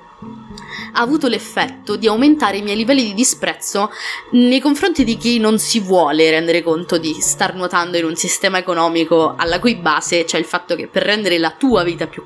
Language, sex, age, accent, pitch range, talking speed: Italian, female, 20-39, native, 165-225 Hz, 190 wpm